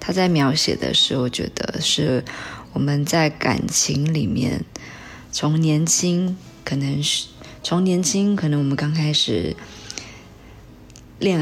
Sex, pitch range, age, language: female, 130-160 Hz, 20-39, Chinese